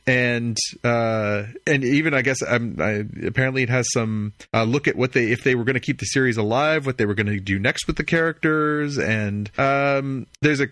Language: English